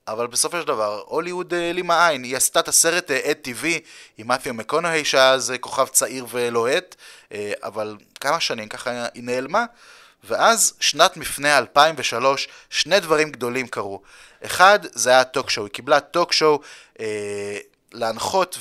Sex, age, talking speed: male, 30-49, 165 wpm